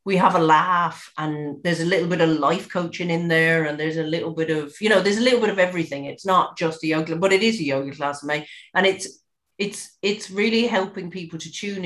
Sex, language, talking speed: female, English, 250 wpm